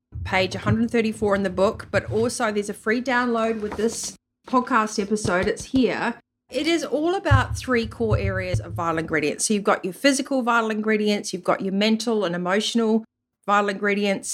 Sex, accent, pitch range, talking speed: female, Australian, 180-225 Hz, 175 wpm